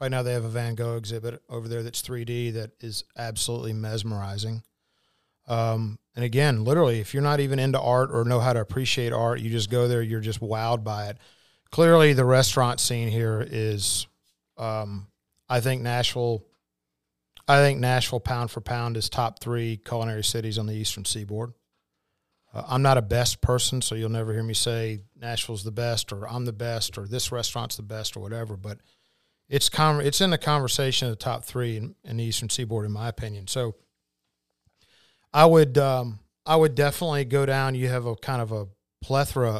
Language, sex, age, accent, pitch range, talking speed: English, male, 40-59, American, 110-125 Hz, 190 wpm